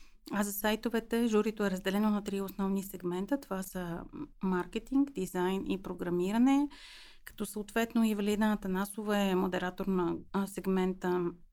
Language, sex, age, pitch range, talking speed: Bulgarian, female, 30-49, 185-220 Hz, 130 wpm